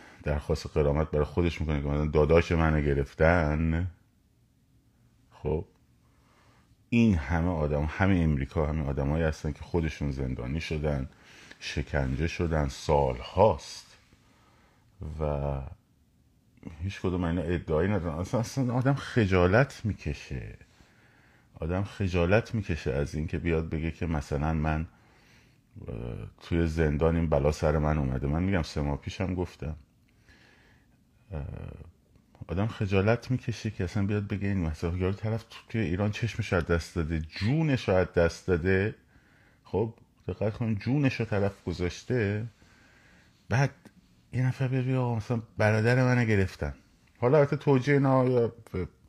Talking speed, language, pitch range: 120 wpm, Persian, 80-110 Hz